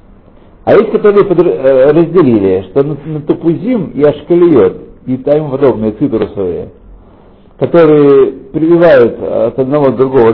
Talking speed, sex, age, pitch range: 110 wpm, male, 60-79, 120-170 Hz